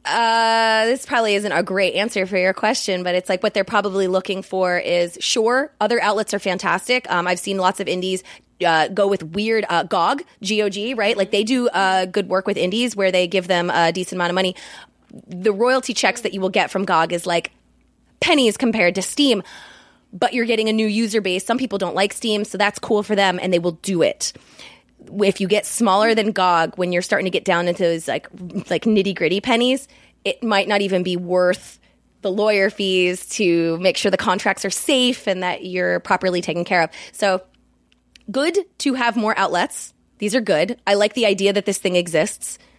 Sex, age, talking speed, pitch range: female, 20-39, 210 wpm, 185-215 Hz